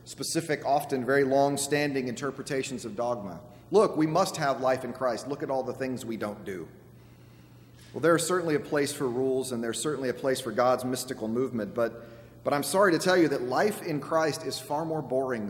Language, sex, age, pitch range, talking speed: English, male, 30-49, 115-150 Hz, 210 wpm